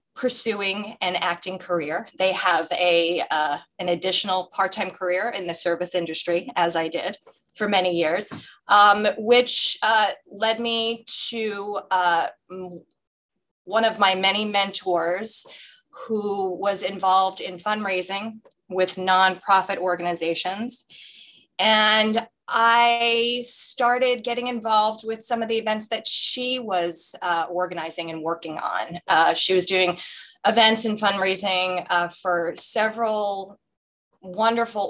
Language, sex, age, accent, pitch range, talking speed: English, female, 20-39, American, 180-215 Hz, 125 wpm